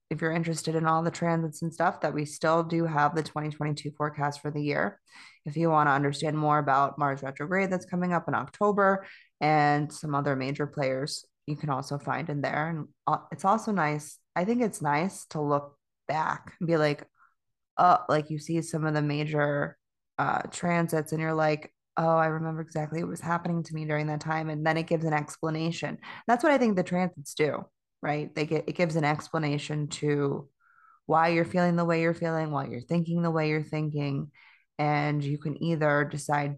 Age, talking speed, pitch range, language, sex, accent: 20-39, 205 wpm, 150-170 Hz, English, female, American